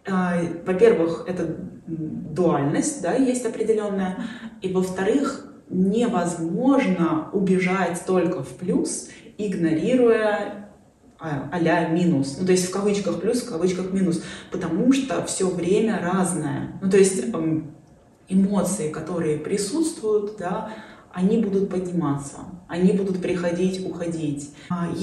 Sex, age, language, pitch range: female, 20-39, Russian, 165-210 Hz